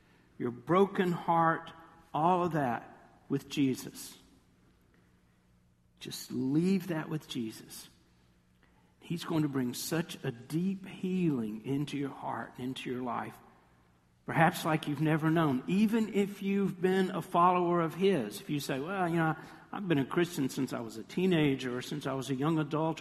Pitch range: 130-165 Hz